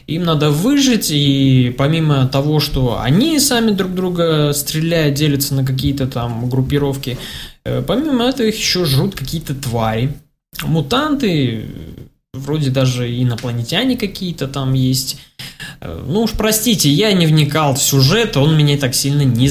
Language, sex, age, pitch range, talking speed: Russian, male, 20-39, 130-175 Hz, 135 wpm